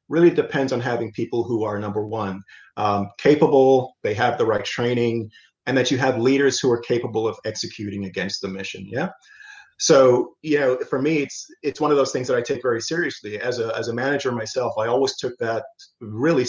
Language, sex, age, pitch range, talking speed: English, male, 30-49, 105-130 Hz, 210 wpm